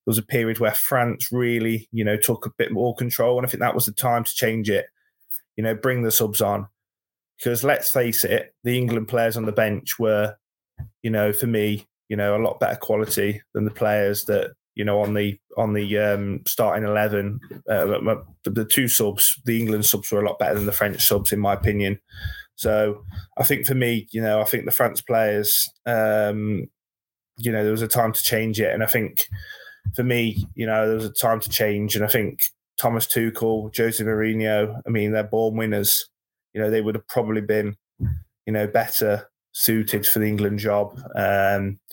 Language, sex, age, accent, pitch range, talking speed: English, male, 20-39, British, 105-115 Hz, 205 wpm